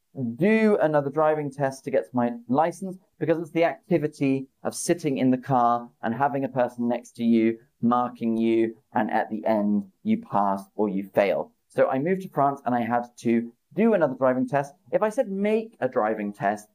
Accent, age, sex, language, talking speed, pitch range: British, 30-49, male, English, 195 wpm, 120-150 Hz